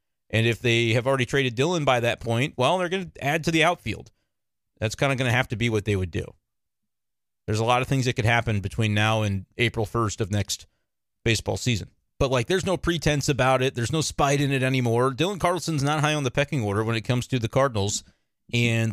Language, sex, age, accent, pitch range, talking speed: English, male, 30-49, American, 110-135 Hz, 240 wpm